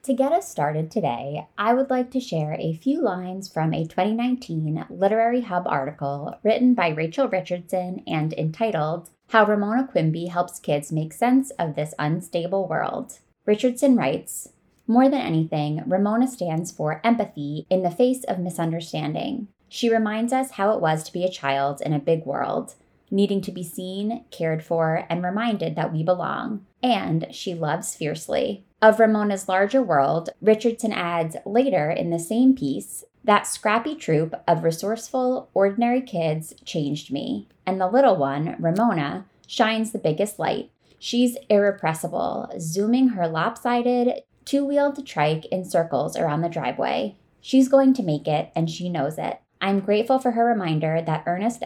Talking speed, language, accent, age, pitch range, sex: 160 wpm, English, American, 20-39, 160-235 Hz, female